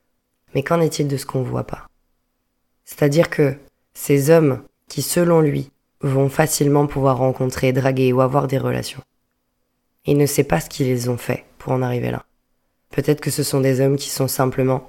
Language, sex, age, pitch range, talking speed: French, female, 20-39, 130-150 Hz, 185 wpm